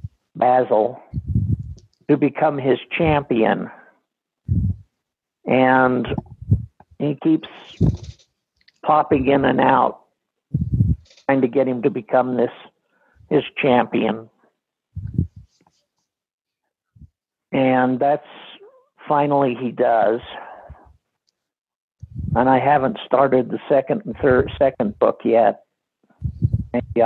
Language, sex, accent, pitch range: English, male, American, 115-145 Hz